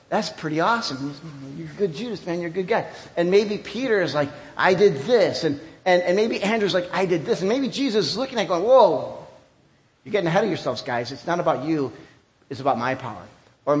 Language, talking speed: English, 230 wpm